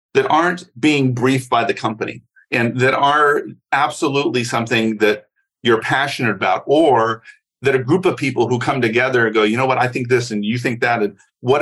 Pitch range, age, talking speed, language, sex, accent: 110-165 Hz, 50-69, 200 wpm, English, male, American